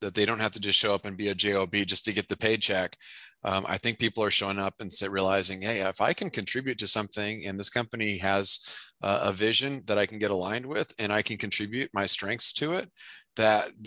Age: 30-49